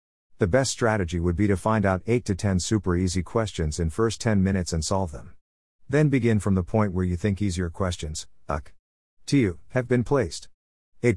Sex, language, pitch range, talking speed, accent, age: male, Bengali, 90-115 Hz, 210 wpm, American, 50-69